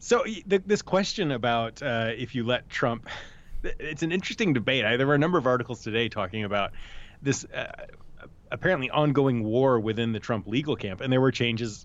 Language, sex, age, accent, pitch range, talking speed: English, male, 30-49, American, 110-135 Hz, 190 wpm